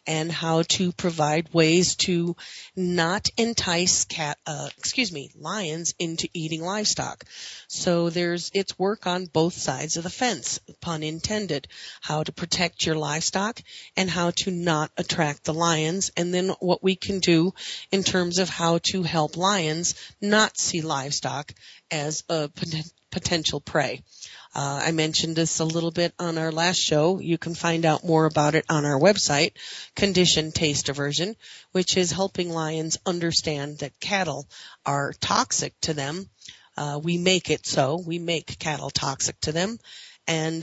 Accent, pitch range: American, 155-185 Hz